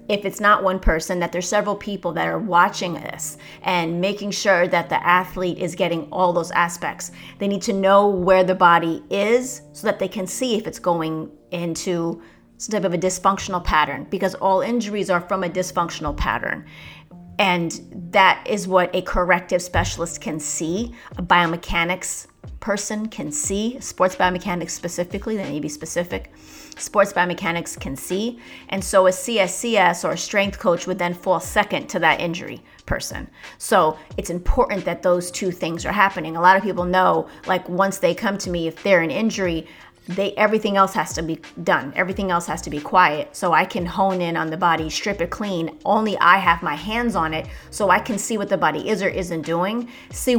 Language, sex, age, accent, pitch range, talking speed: English, female, 30-49, American, 170-200 Hz, 195 wpm